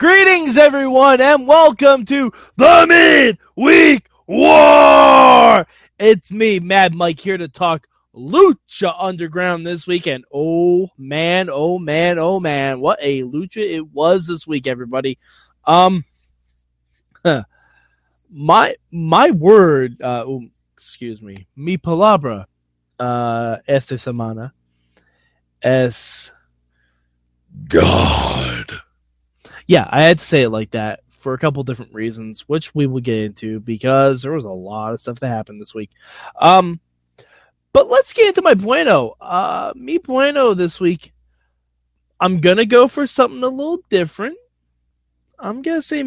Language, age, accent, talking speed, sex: English, 20-39, American, 135 wpm, male